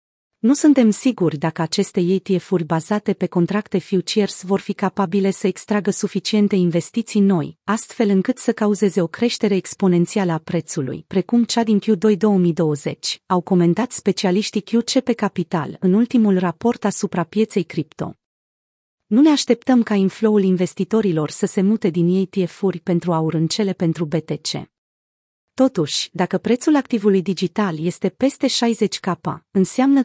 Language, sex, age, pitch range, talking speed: Romanian, female, 30-49, 175-220 Hz, 140 wpm